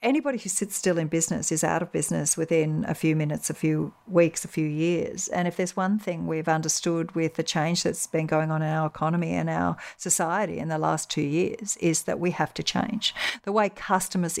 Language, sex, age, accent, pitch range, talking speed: English, female, 50-69, Australian, 160-200 Hz, 225 wpm